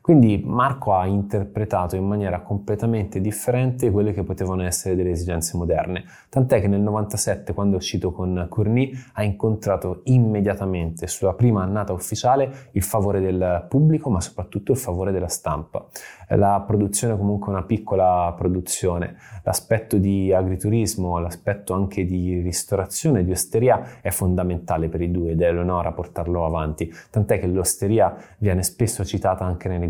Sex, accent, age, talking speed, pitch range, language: male, native, 20-39, 150 wpm, 90-110 Hz, Italian